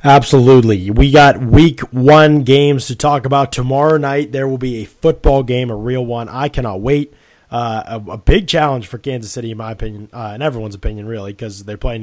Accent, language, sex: American, English, male